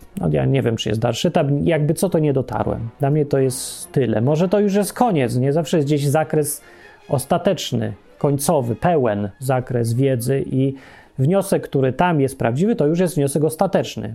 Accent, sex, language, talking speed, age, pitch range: native, male, Polish, 180 wpm, 30-49, 130-175 Hz